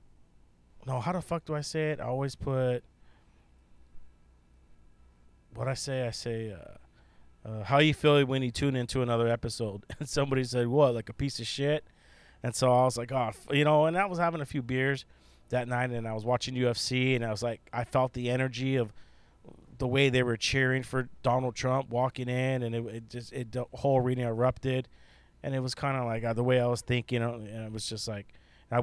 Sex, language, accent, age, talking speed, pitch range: male, English, American, 30-49, 220 wpm, 110-130 Hz